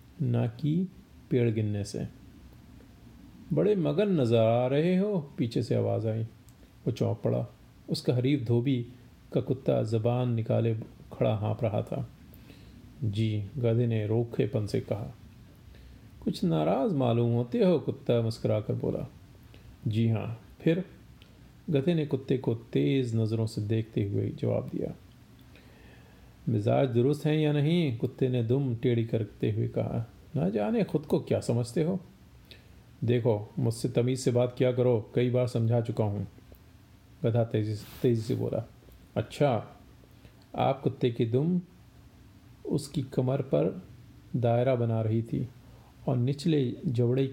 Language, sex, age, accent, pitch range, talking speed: Hindi, male, 40-59, native, 115-135 Hz, 135 wpm